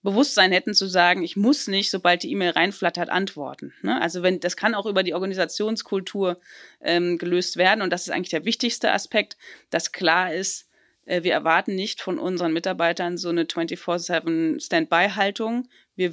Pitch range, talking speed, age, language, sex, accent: 175-210 Hz, 165 wpm, 30-49, German, female, German